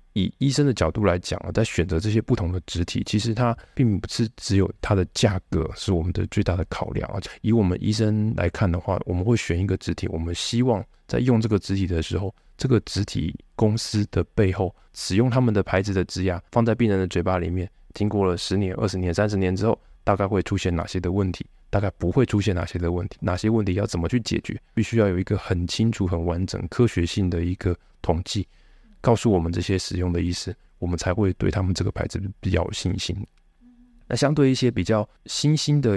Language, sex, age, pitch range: Chinese, male, 20-39, 90-110 Hz